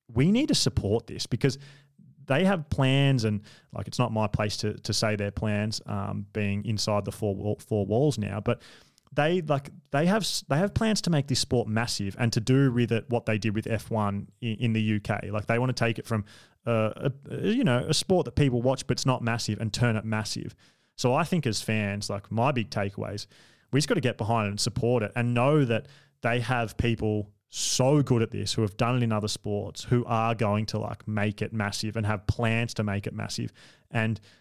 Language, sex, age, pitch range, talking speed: English, male, 20-39, 105-135 Hz, 230 wpm